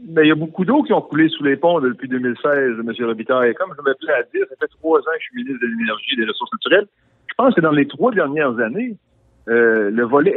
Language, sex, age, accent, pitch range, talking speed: French, male, 60-79, French, 115-170 Hz, 270 wpm